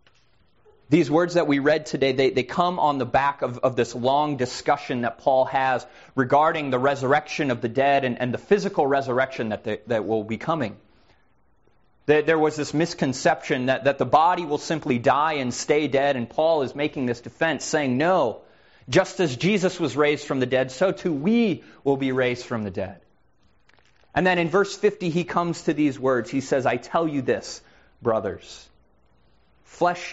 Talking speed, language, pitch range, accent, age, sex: 185 wpm, English, 125-160 Hz, American, 30-49, male